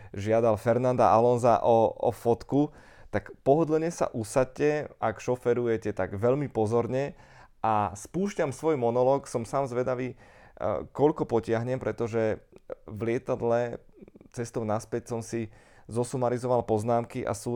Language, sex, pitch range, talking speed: Slovak, male, 105-125 Hz, 120 wpm